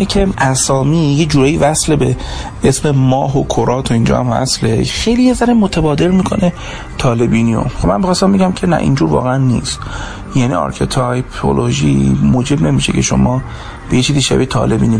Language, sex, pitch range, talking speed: Persian, male, 85-140 Hz, 155 wpm